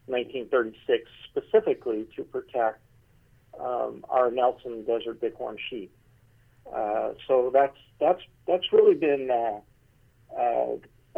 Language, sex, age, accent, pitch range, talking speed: English, male, 50-69, American, 115-140 Hz, 100 wpm